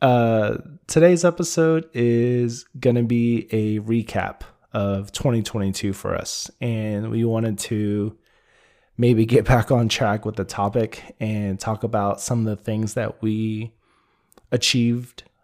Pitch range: 105-120 Hz